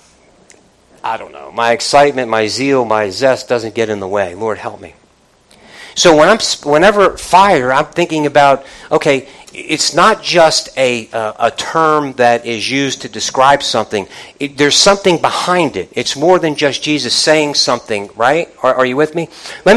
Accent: American